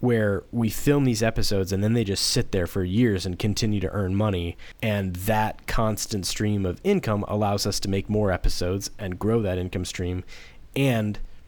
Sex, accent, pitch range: male, American, 95-115 Hz